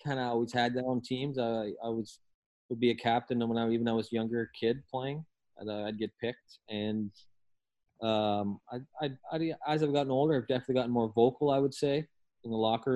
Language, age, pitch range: English, 20-39, 105-125 Hz